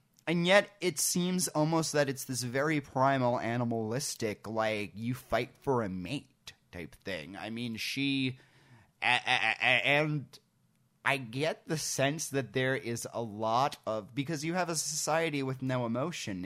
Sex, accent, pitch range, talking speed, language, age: male, American, 110-145 Hz, 150 wpm, English, 30-49